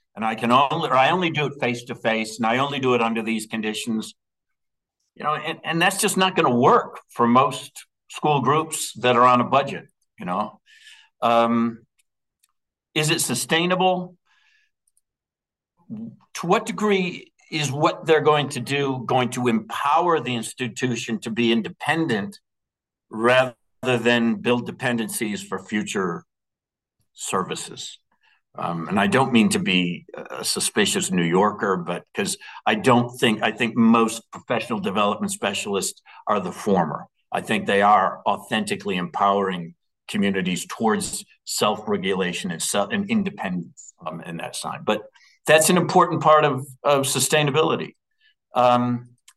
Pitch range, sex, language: 115-160 Hz, male, English